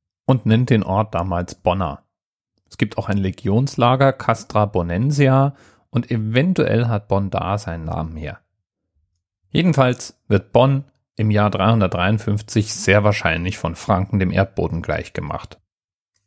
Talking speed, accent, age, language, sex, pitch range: 125 wpm, German, 40-59, German, male, 95-125 Hz